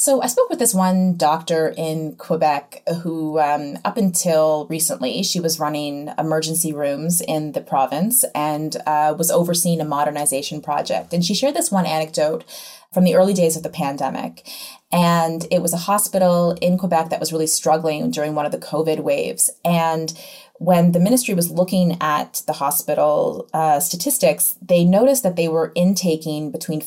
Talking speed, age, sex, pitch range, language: 170 wpm, 20-39, female, 155-185 Hz, English